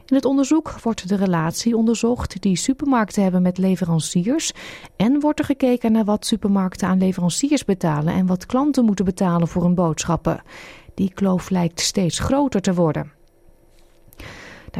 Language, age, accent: Dutch, 30-49, Dutch